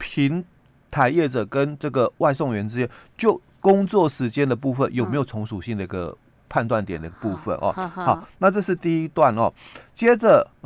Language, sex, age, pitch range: Chinese, male, 30-49, 120-185 Hz